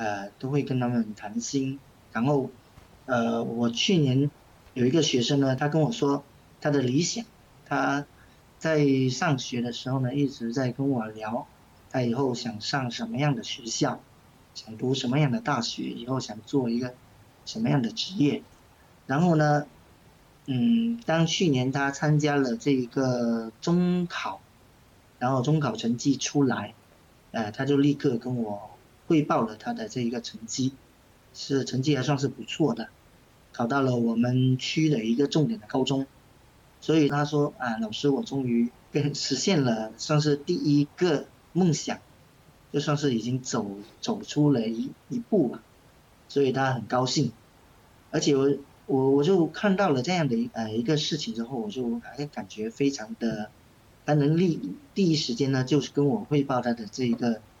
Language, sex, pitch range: English, male, 115-145 Hz